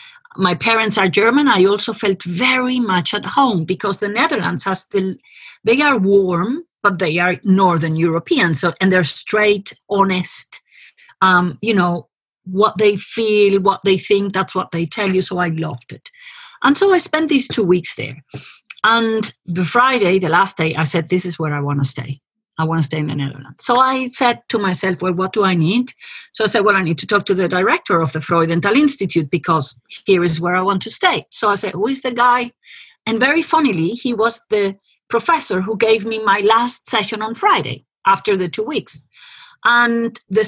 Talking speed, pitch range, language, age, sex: 205 wpm, 175-230 Hz, English, 40-59, female